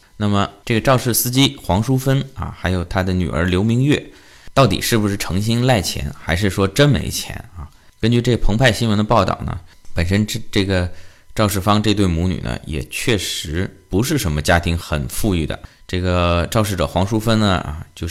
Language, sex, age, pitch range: Chinese, male, 20-39, 80-105 Hz